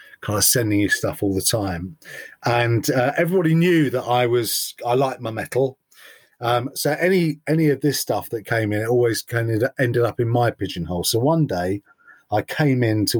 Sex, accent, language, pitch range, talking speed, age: male, British, English, 110-145 Hz, 205 wpm, 30-49